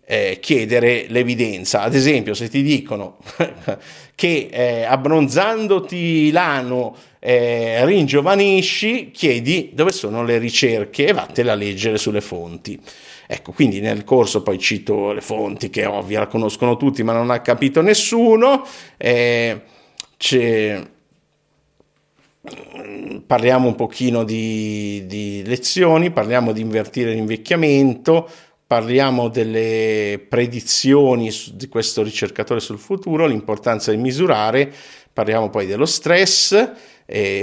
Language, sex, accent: Italian, male, native